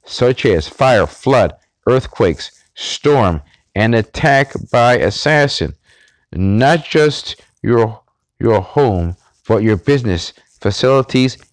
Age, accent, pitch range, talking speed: 50-69, American, 95-120 Hz, 100 wpm